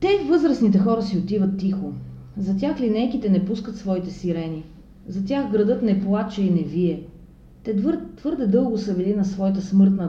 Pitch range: 160-215 Hz